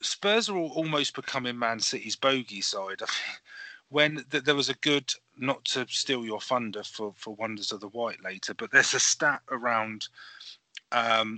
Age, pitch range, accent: 30-49, 110-140 Hz, British